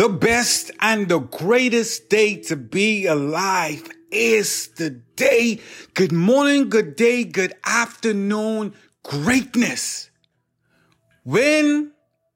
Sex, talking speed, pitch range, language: male, 95 wpm, 185-275 Hz, English